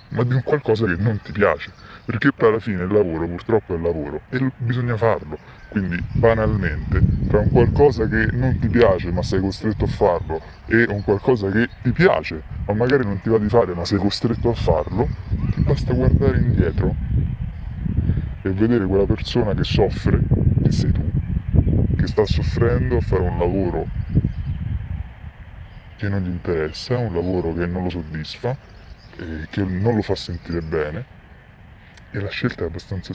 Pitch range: 85-110 Hz